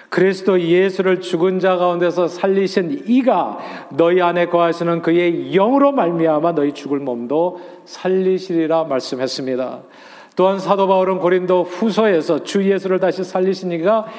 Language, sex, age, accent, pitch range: Korean, male, 40-59, native, 145-180 Hz